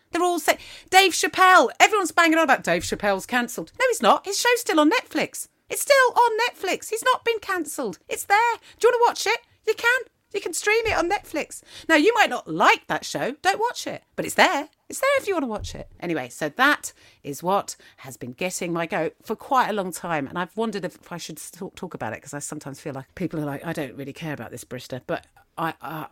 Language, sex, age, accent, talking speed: English, female, 40-59, British, 245 wpm